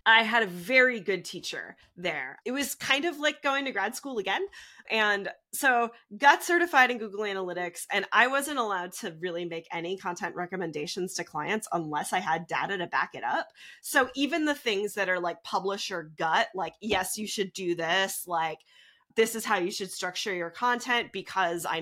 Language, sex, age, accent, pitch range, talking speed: English, female, 20-39, American, 185-265 Hz, 195 wpm